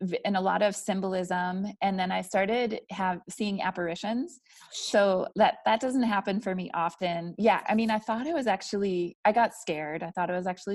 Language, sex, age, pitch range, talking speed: English, female, 20-39, 175-205 Hz, 200 wpm